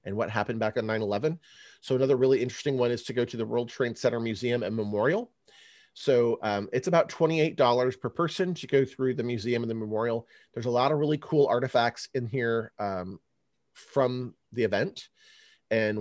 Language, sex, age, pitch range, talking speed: English, male, 30-49, 105-125 Hz, 190 wpm